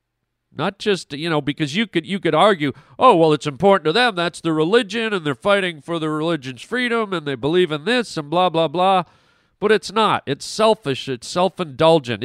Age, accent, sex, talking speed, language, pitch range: 40-59, American, male, 205 wpm, English, 125-170 Hz